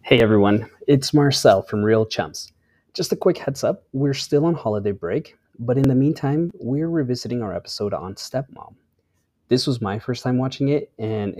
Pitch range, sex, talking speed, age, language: 110-140 Hz, male, 185 wpm, 30-49, English